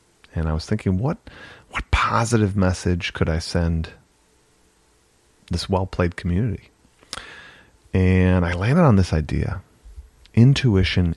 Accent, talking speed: American, 120 wpm